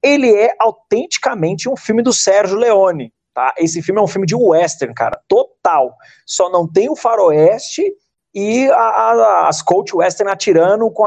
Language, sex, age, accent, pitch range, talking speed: Portuguese, male, 30-49, Brazilian, 155-205 Hz, 155 wpm